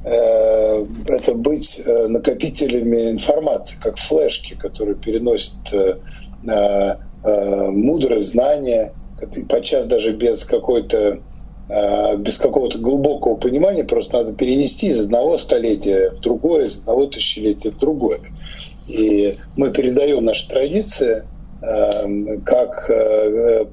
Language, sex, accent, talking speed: Russian, male, native, 95 wpm